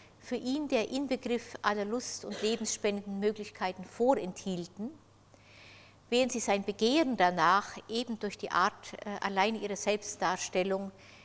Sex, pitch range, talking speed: female, 185-230 Hz, 115 wpm